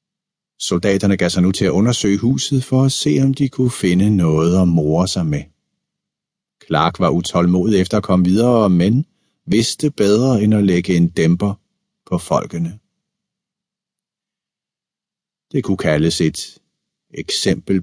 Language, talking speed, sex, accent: Danish, 140 wpm, male, native